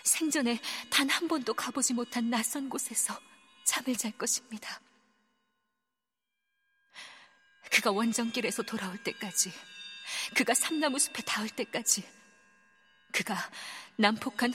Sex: female